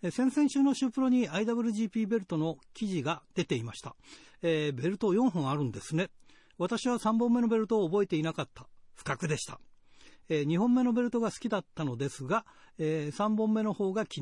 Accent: native